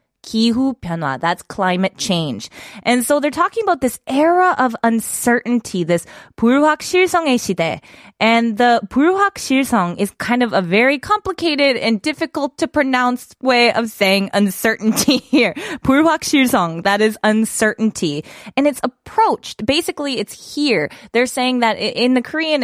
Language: Korean